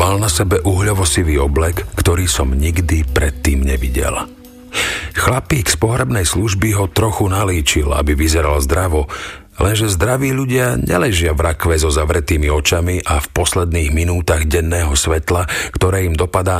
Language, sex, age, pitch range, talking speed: Slovak, male, 50-69, 80-100 Hz, 135 wpm